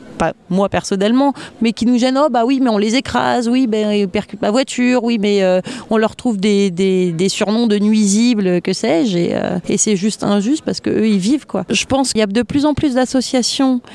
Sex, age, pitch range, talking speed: female, 30-49, 195-240 Hz, 240 wpm